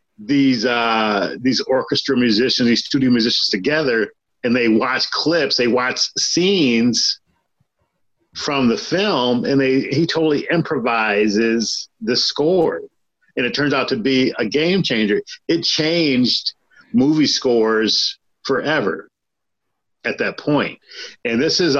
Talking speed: 125 wpm